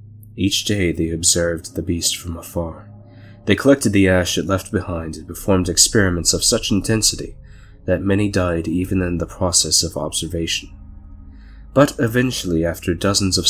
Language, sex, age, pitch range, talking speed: English, male, 20-39, 85-100 Hz, 155 wpm